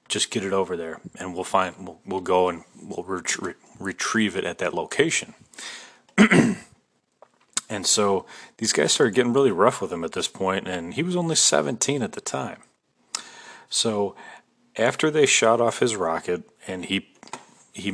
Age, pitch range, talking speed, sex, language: 30-49, 90-105 Hz, 165 wpm, male, English